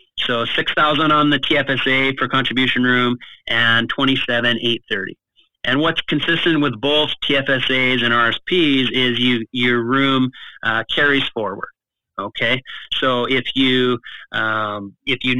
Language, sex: English, male